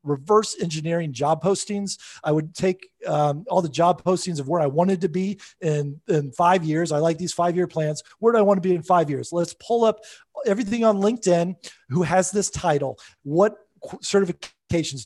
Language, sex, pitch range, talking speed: English, male, 155-205 Hz, 190 wpm